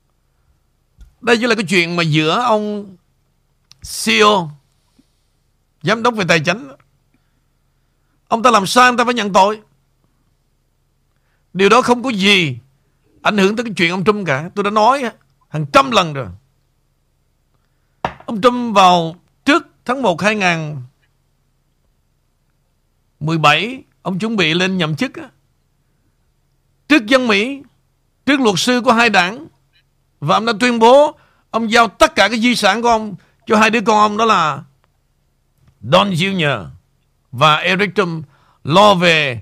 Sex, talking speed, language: male, 140 wpm, Vietnamese